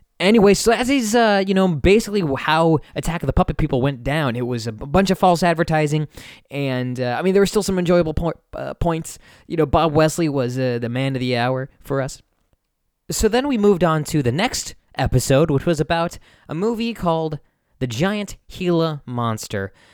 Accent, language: American, English